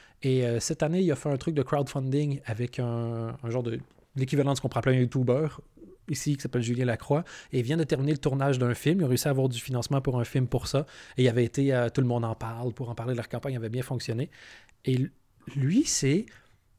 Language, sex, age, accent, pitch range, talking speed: French, male, 30-49, Canadian, 120-155 Hz, 260 wpm